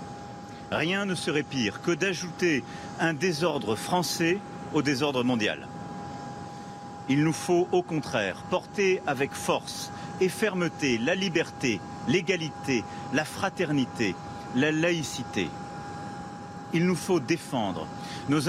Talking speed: 110 wpm